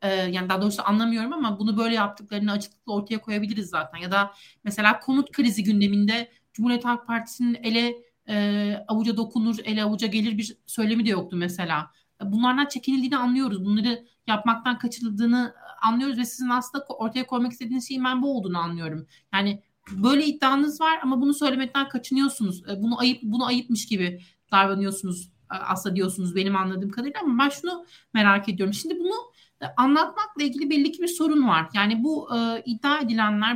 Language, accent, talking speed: Turkish, native, 165 wpm